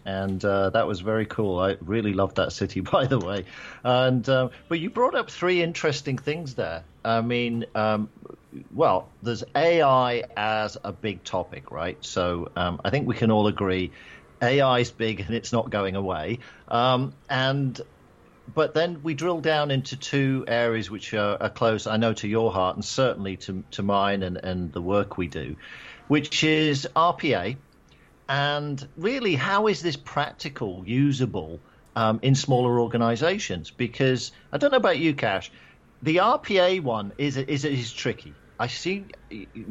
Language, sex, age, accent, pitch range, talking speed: English, male, 50-69, British, 100-135 Hz, 170 wpm